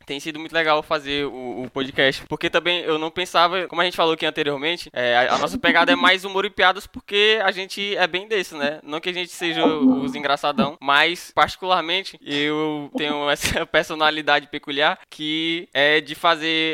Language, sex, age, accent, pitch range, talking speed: Portuguese, male, 10-29, Brazilian, 150-190 Hz, 190 wpm